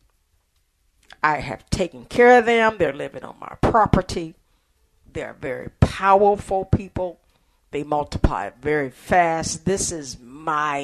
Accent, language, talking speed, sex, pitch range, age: American, English, 120 wpm, female, 125-195 Hz, 50-69